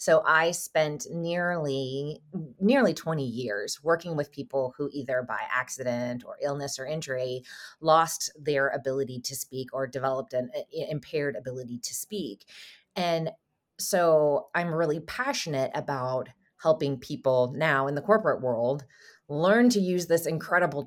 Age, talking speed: 30-49, 140 wpm